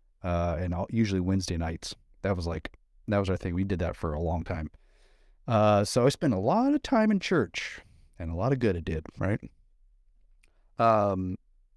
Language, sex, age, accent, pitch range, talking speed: English, male, 30-49, American, 90-125 Hz, 200 wpm